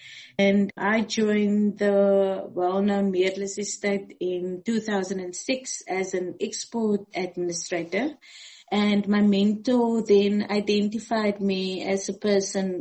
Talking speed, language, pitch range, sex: 105 wpm, English, 190-230 Hz, female